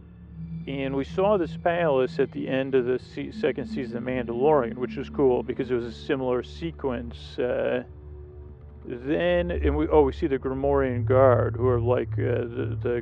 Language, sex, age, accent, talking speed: English, male, 40-59, American, 180 wpm